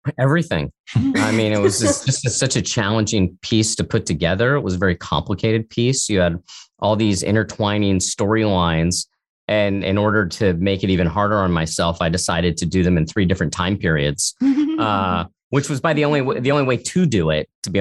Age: 40-59